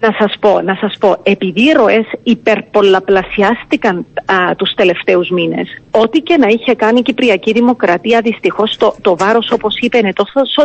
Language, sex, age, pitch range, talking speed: Greek, female, 40-59, 200-255 Hz, 170 wpm